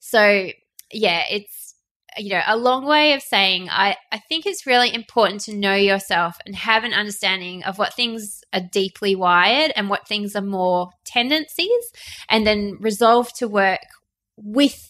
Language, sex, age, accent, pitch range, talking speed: English, female, 20-39, Australian, 185-225 Hz, 165 wpm